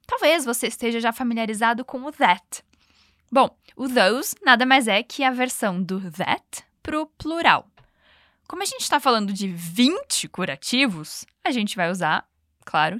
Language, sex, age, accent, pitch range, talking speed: Portuguese, female, 10-29, Brazilian, 200-280 Hz, 160 wpm